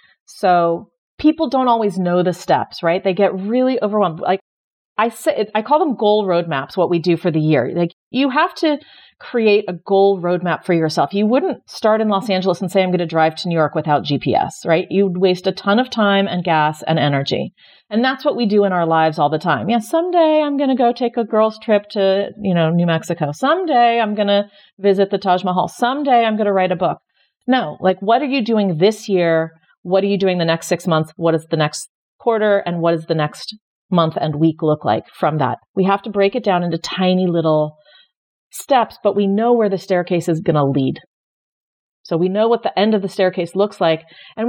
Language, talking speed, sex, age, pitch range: English, 230 wpm, female, 40-59, 175-230 Hz